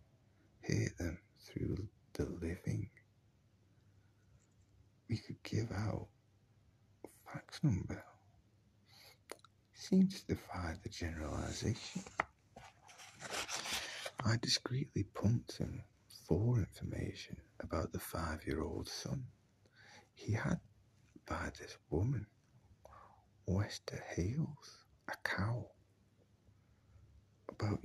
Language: English